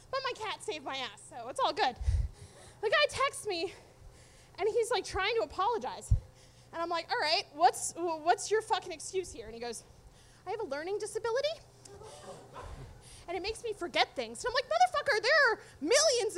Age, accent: 20-39, American